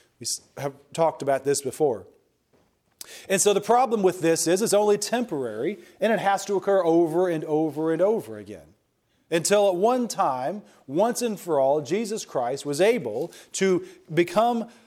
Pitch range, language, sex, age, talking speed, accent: 155-200 Hz, English, male, 40-59, 165 wpm, American